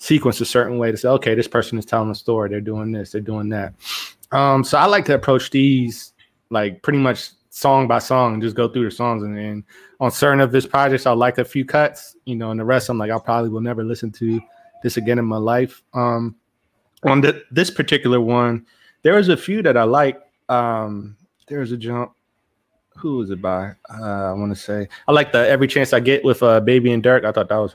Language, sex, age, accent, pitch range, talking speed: English, male, 20-39, American, 110-130 Hz, 240 wpm